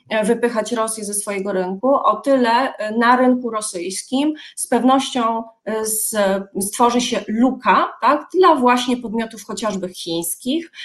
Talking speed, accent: 110 wpm, native